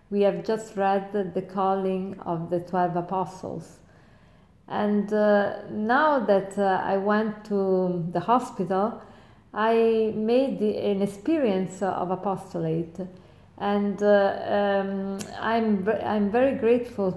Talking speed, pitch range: 115 wpm, 190-215 Hz